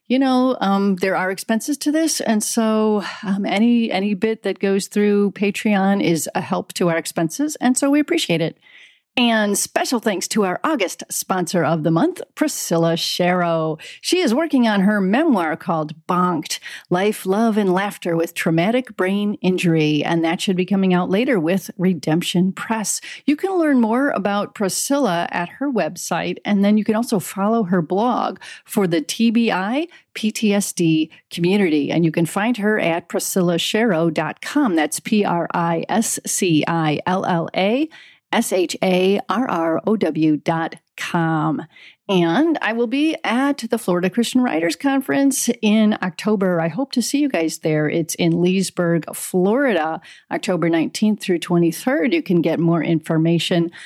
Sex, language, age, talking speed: female, English, 40-59, 155 wpm